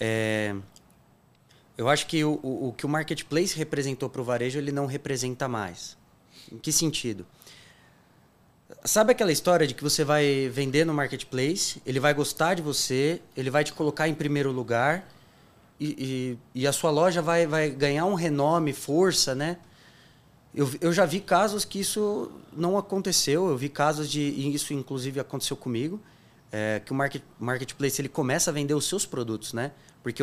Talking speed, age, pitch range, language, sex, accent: 175 wpm, 20-39, 130-170 Hz, Portuguese, male, Brazilian